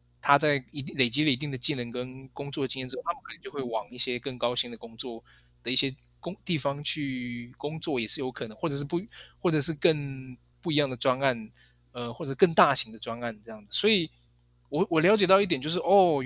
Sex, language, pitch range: male, Chinese, 120-155 Hz